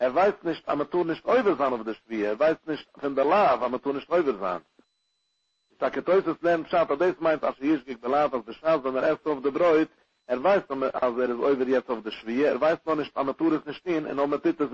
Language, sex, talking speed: English, male, 95 wpm